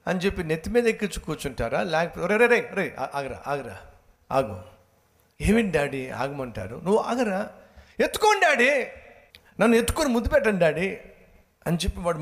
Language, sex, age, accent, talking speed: Telugu, male, 60-79, native, 135 wpm